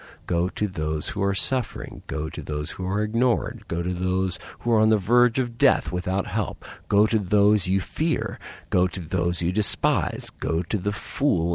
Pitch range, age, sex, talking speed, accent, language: 85-105 Hz, 50-69, male, 195 wpm, American, English